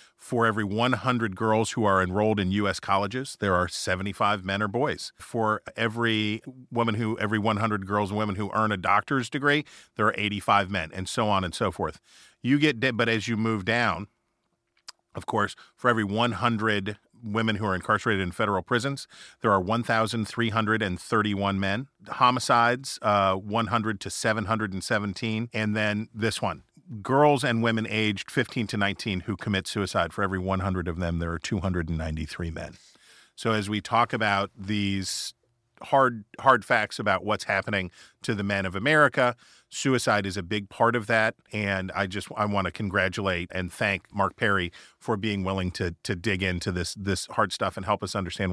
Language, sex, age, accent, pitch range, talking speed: English, male, 40-59, American, 95-115 Hz, 175 wpm